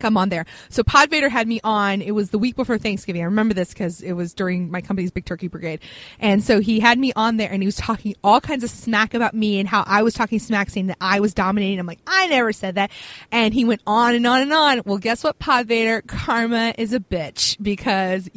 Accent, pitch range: American, 185-225 Hz